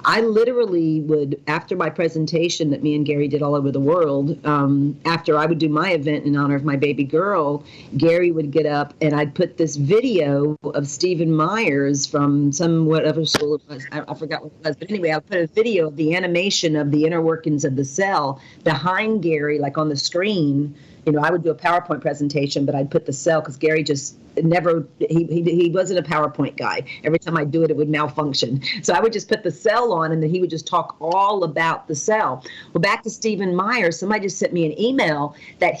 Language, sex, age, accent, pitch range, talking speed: English, female, 40-59, American, 150-175 Hz, 225 wpm